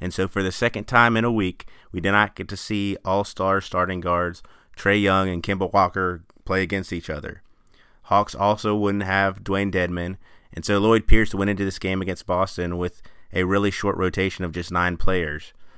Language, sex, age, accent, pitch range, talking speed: English, male, 30-49, American, 95-105 Hz, 200 wpm